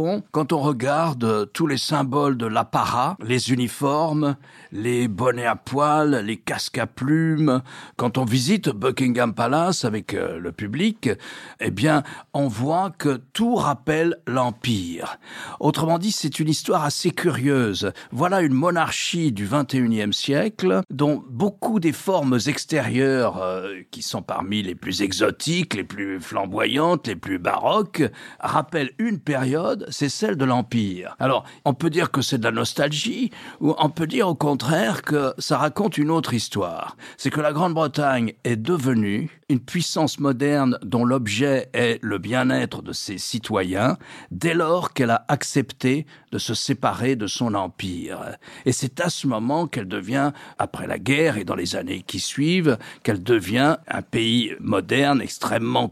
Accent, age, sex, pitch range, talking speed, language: French, 50-69, male, 120-155 Hz, 155 wpm, French